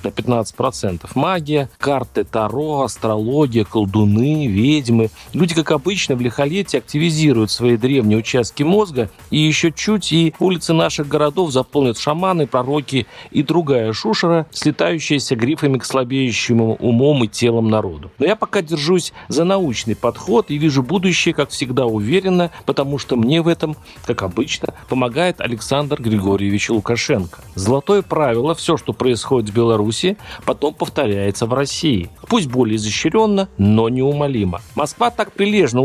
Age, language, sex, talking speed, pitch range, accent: 40-59, Russian, male, 135 wpm, 120-165 Hz, native